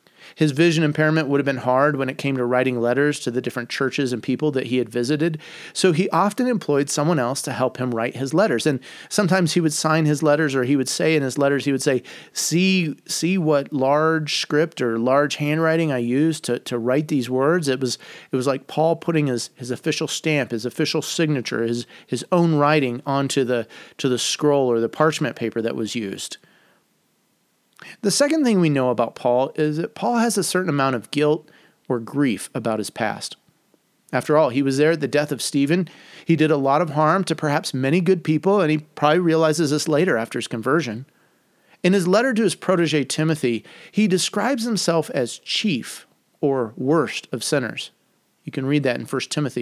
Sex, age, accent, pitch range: male, 30-49, American, 130-165 Hz